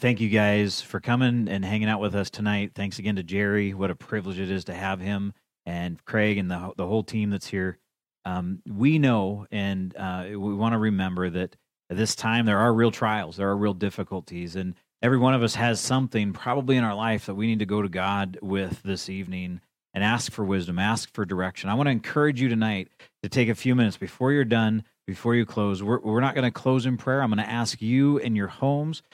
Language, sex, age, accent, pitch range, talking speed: English, male, 30-49, American, 100-120 Hz, 235 wpm